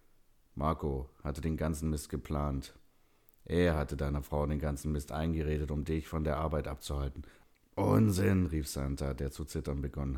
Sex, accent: male, German